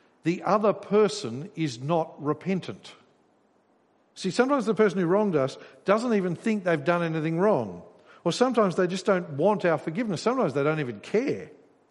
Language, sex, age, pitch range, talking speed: English, male, 50-69, 150-200 Hz, 165 wpm